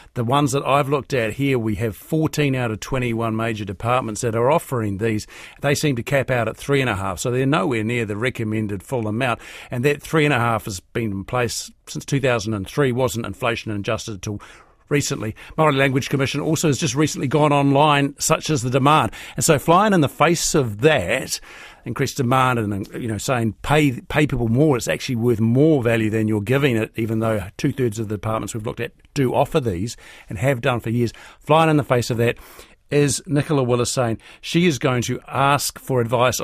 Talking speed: 210 wpm